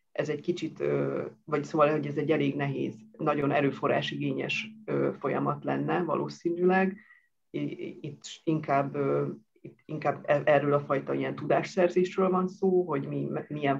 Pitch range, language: 140-175 Hz, Hungarian